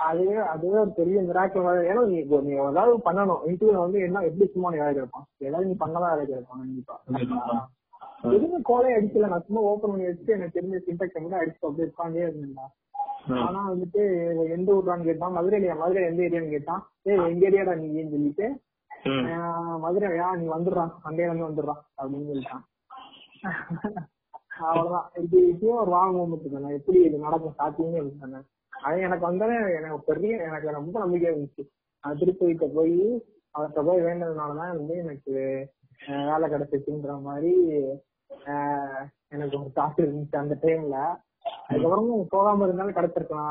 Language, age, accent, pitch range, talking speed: Tamil, 30-49, native, 145-185 Hz, 75 wpm